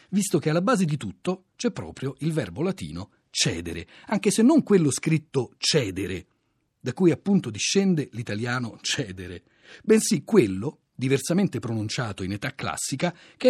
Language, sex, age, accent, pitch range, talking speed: Italian, male, 40-59, native, 110-180 Hz, 140 wpm